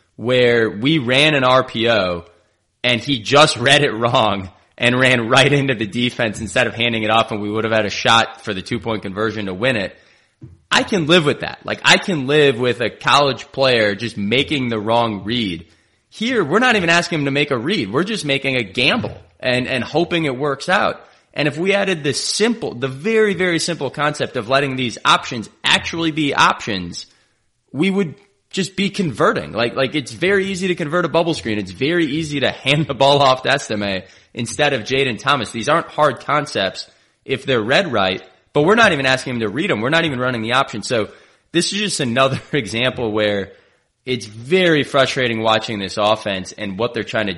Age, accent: 20-39, American